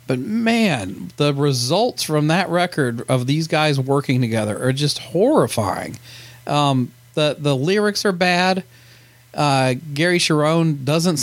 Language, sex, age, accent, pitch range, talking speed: English, male, 40-59, American, 120-145 Hz, 135 wpm